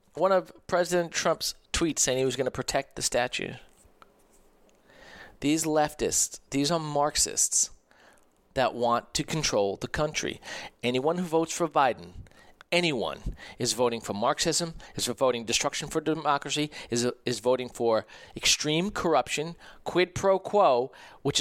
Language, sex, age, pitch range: English, male, 40-59, 125-165 Hz